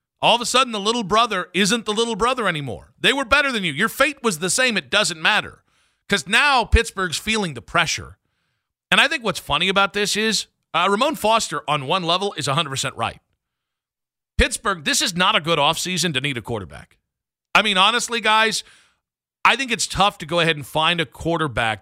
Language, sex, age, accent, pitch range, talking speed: English, male, 50-69, American, 145-205 Hz, 205 wpm